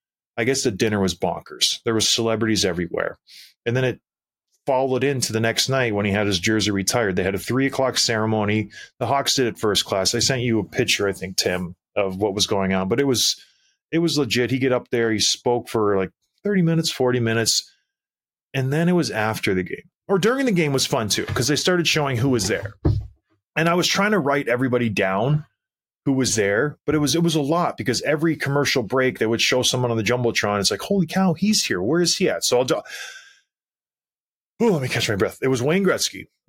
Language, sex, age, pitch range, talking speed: English, male, 30-49, 115-155 Hz, 230 wpm